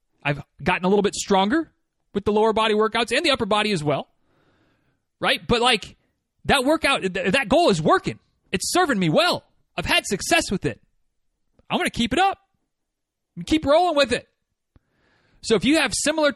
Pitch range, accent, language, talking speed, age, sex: 205-270 Hz, American, English, 185 wpm, 30-49, male